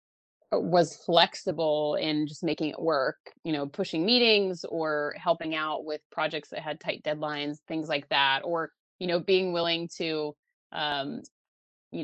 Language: English